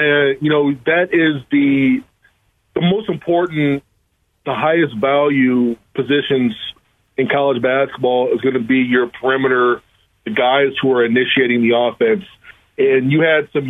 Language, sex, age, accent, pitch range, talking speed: English, male, 30-49, American, 130-165 Hz, 140 wpm